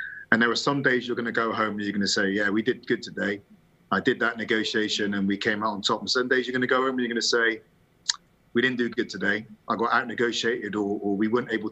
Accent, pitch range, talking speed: British, 105-125 Hz, 285 wpm